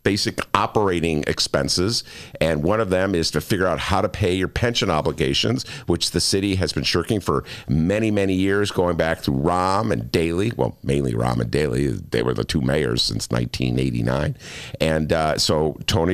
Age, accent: 50-69, American